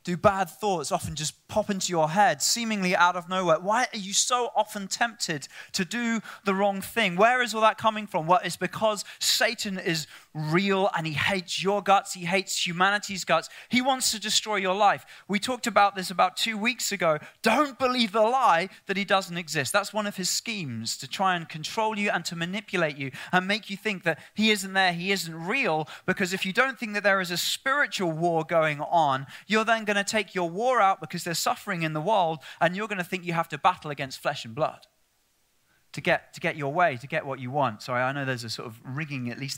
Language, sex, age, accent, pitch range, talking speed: English, male, 20-39, British, 155-210 Hz, 235 wpm